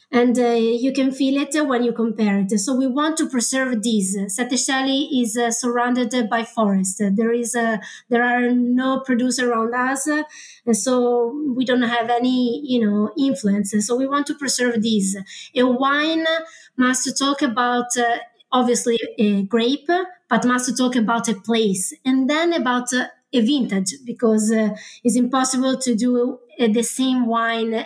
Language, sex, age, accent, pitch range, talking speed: English, female, 20-39, Italian, 230-265 Hz, 170 wpm